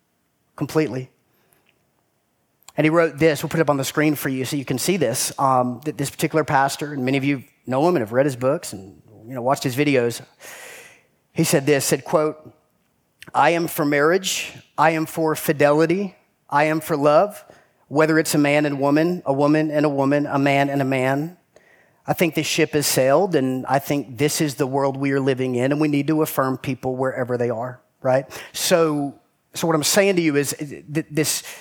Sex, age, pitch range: male, 30-49, 145-185 Hz